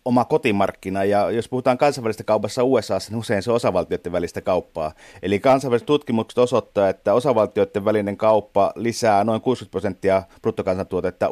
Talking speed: 150 wpm